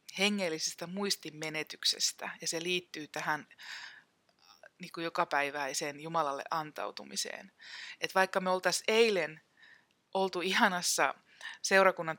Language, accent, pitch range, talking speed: Finnish, native, 150-180 Hz, 80 wpm